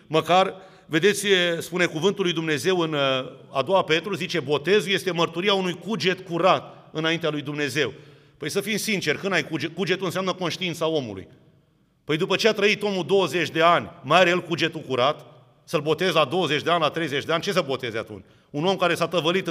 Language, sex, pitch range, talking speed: Romanian, male, 160-200 Hz, 195 wpm